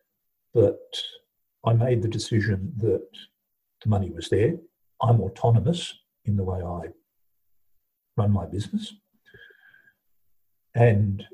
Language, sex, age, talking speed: English, male, 50-69, 105 wpm